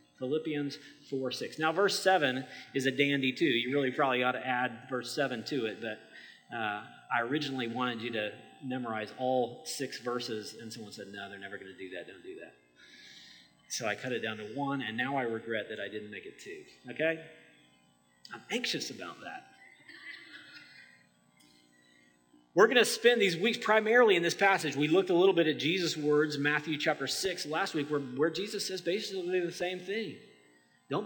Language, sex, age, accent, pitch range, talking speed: English, male, 30-49, American, 120-205 Hz, 190 wpm